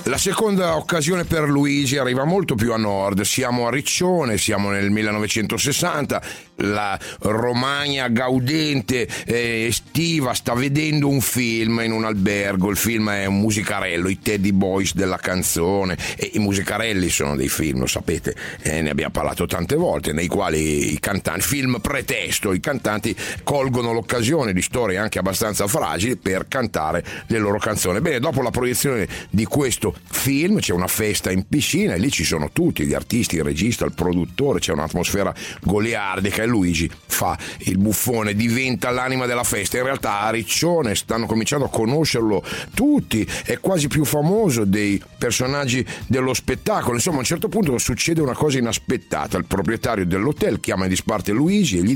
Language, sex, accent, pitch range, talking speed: Italian, male, native, 100-140 Hz, 160 wpm